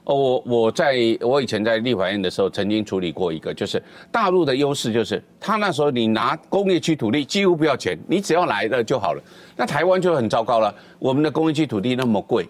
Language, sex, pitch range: Chinese, male, 110-165 Hz